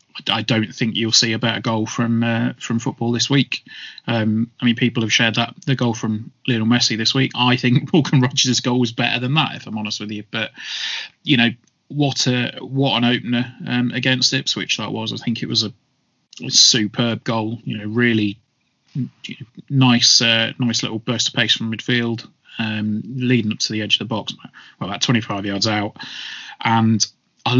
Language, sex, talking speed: English, male, 200 wpm